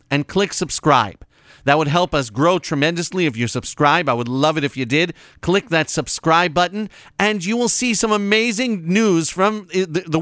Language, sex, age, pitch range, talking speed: English, male, 40-59, 140-180 Hz, 190 wpm